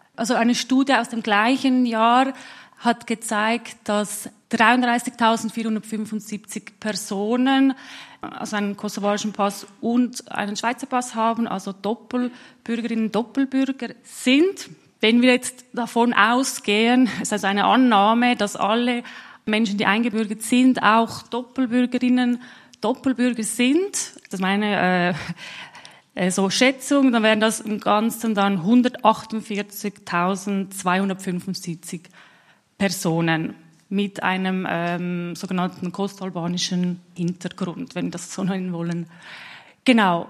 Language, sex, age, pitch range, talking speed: German, female, 30-49, 195-240 Hz, 105 wpm